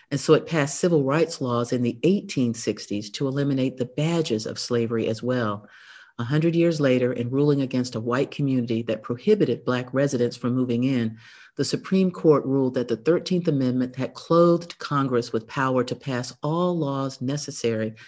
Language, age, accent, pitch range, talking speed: English, 50-69, American, 120-145 Hz, 175 wpm